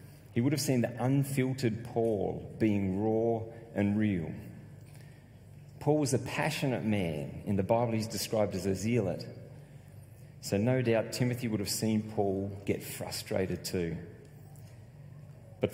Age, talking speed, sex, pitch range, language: 30-49, 135 wpm, male, 110-140 Hz, English